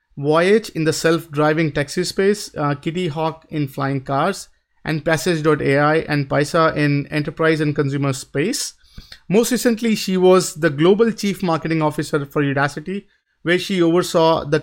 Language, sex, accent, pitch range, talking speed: English, male, Indian, 150-175 Hz, 150 wpm